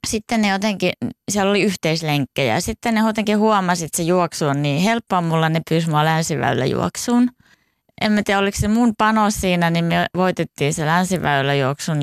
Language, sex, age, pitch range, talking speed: Finnish, female, 20-39, 140-180 Hz, 175 wpm